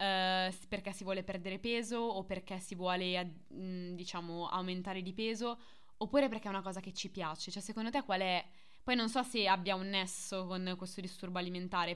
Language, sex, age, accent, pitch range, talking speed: Italian, female, 20-39, native, 180-210 Hz, 185 wpm